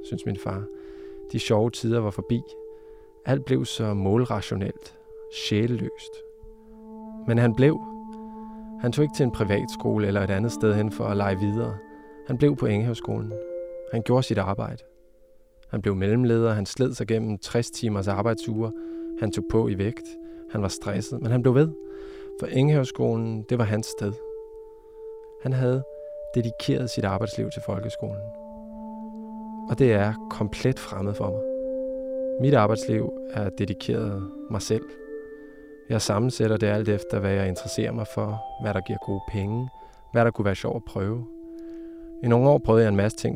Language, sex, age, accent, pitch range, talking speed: Danish, male, 20-39, native, 105-155 Hz, 160 wpm